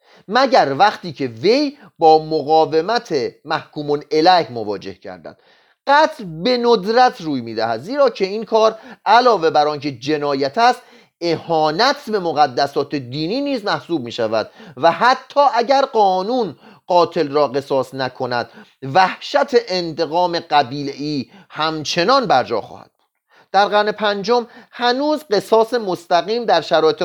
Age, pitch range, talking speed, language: 40-59, 155-235 Hz, 120 wpm, Persian